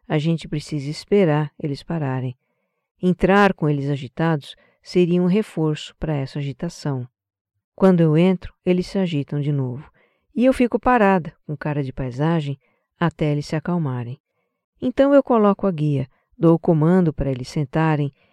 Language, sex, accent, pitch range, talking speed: Portuguese, female, Brazilian, 145-190 Hz, 155 wpm